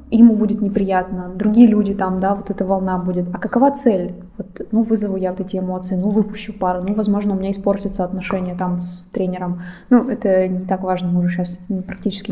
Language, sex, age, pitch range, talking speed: English, female, 20-39, 195-240 Hz, 205 wpm